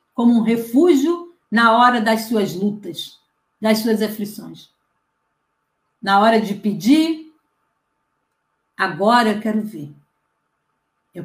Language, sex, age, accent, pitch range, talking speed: Portuguese, female, 50-69, Brazilian, 200-240 Hz, 105 wpm